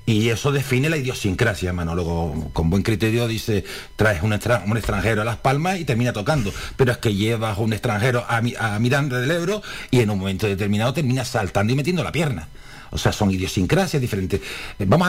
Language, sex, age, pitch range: Spanish, male, 50-69, 105-145 Hz